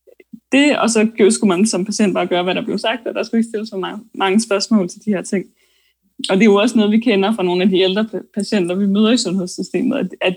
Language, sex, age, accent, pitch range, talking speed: Danish, female, 20-39, native, 200-235 Hz, 255 wpm